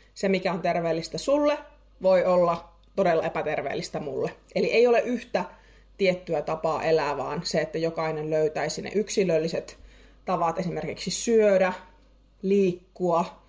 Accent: native